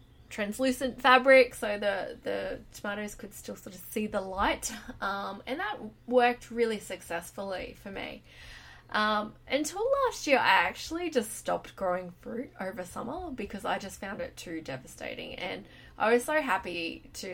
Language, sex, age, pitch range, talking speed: English, female, 20-39, 195-255 Hz, 160 wpm